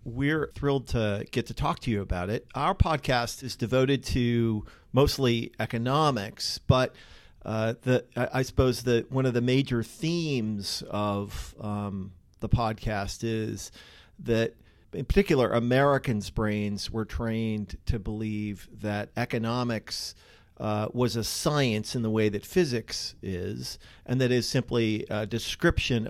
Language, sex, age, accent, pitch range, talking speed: English, male, 40-59, American, 105-125 Hz, 140 wpm